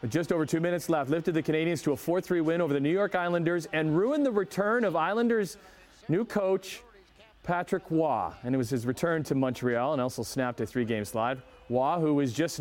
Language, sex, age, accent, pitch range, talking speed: English, male, 40-59, American, 130-160 Hz, 210 wpm